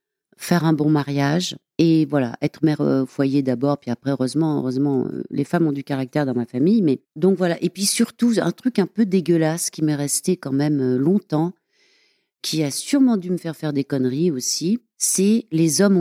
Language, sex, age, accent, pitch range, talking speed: French, female, 40-59, French, 140-185 Hz, 200 wpm